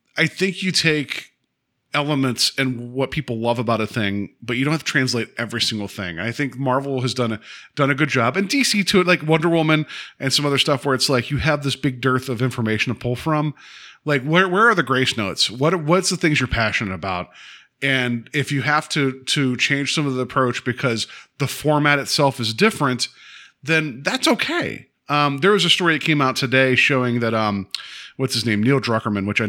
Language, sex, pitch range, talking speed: English, male, 110-145 Hz, 220 wpm